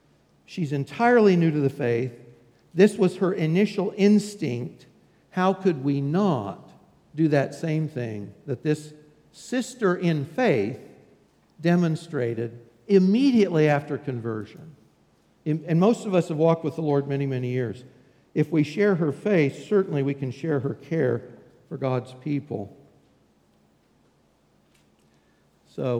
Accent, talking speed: American, 125 wpm